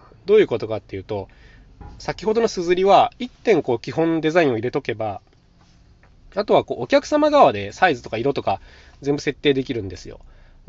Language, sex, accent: Japanese, male, native